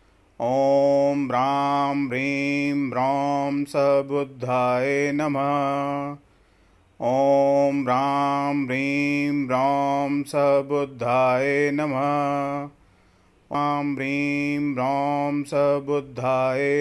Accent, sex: native, male